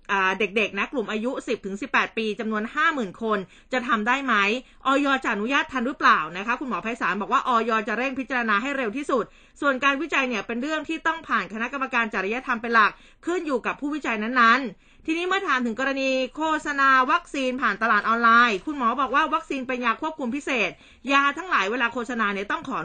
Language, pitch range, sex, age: Thai, 220-275 Hz, female, 20-39